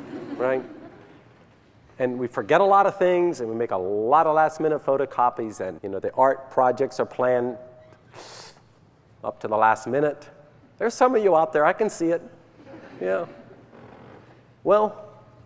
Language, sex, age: English, male, 40-59